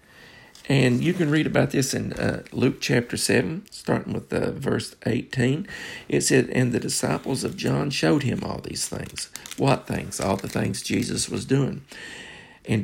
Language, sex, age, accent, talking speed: English, male, 50-69, American, 175 wpm